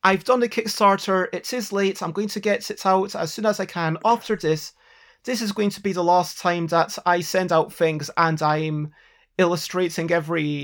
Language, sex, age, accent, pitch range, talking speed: English, male, 30-49, British, 170-220 Hz, 210 wpm